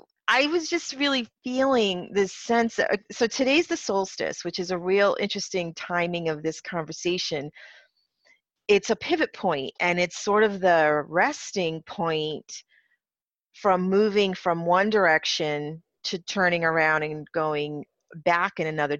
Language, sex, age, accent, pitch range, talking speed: English, female, 40-59, American, 165-225 Hz, 140 wpm